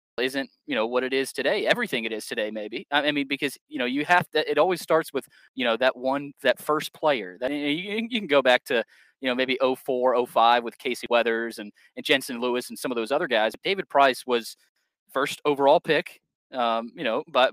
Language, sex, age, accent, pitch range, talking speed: English, male, 20-39, American, 125-170 Hz, 220 wpm